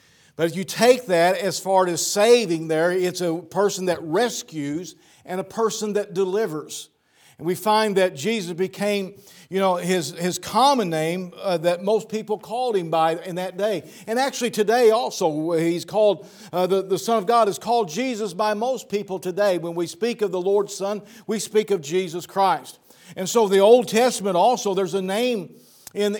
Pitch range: 165-205 Hz